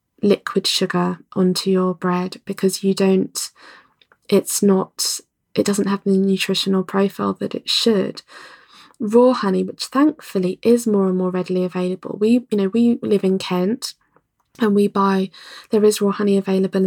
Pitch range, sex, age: 190-205 Hz, female, 20-39